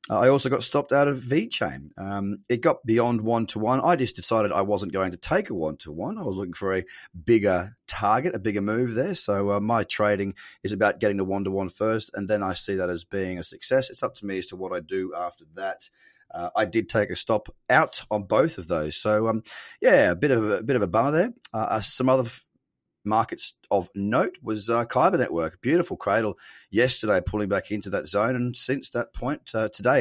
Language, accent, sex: English, Australian, male